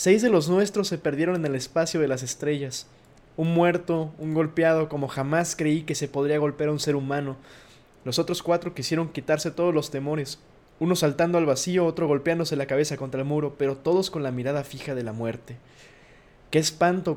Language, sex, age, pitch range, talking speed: Spanish, male, 20-39, 145-185 Hz, 200 wpm